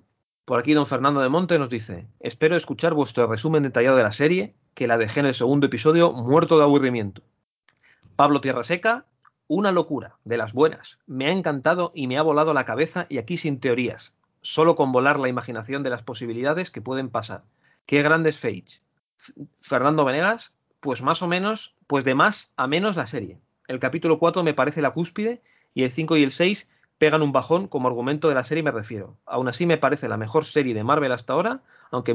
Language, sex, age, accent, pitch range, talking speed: Spanish, male, 30-49, Spanish, 125-160 Hz, 205 wpm